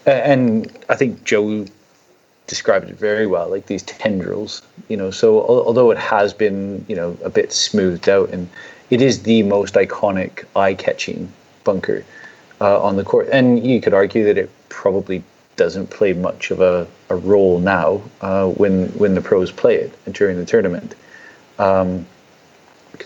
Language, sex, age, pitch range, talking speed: English, male, 30-49, 95-115 Hz, 160 wpm